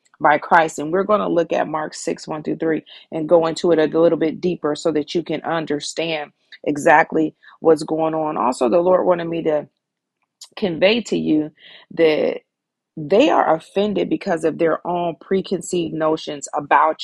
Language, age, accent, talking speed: English, 40-59, American, 170 wpm